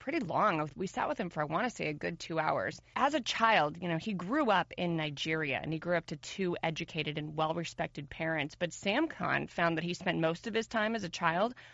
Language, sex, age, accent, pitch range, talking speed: English, female, 30-49, American, 165-200 Hz, 250 wpm